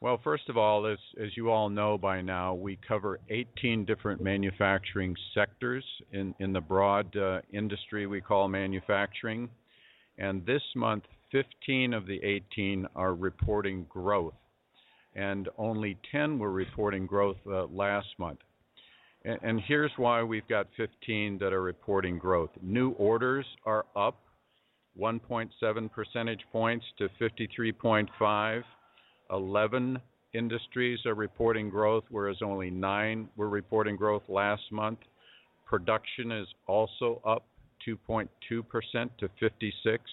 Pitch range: 100-115 Hz